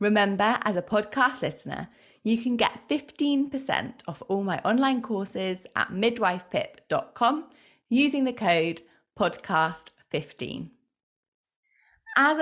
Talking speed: 100 wpm